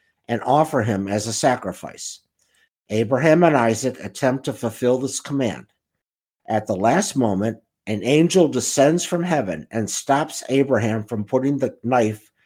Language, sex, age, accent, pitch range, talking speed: English, male, 50-69, American, 105-140 Hz, 145 wpm